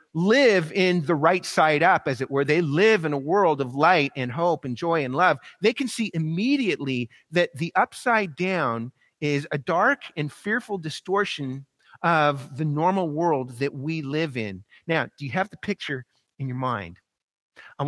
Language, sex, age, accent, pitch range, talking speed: English, male, 30-49, American, 135-195 Hz, 180 wpm